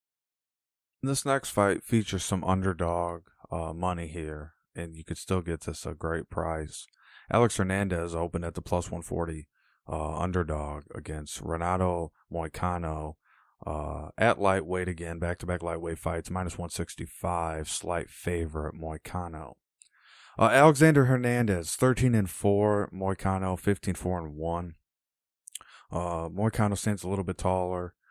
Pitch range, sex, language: 80-100 Hz, male, English